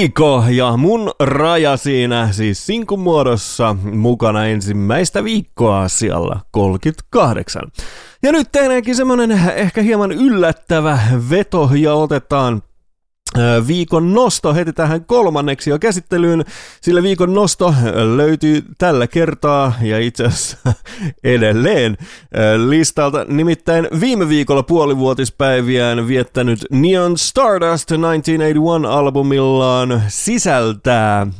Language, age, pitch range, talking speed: English, 30-49, 105-160 Hz, 90 wpm